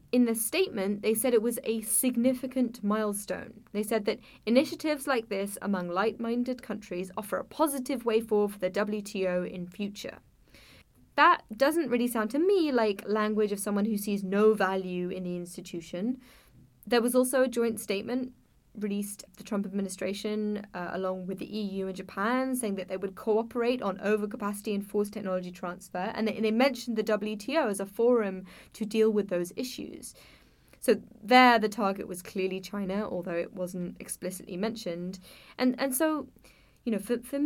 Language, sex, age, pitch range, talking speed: English, female, 10-29, 195-245 Hz, 175 wpm